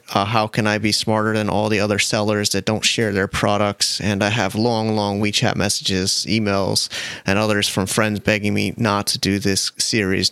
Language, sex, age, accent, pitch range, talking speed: English, male, 30-49, American, 105-120 Hz, 205 wpm